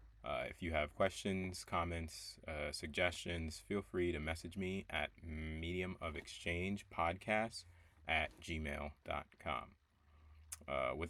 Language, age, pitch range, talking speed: English, 30-49, 75-90 Hz, 95 wpm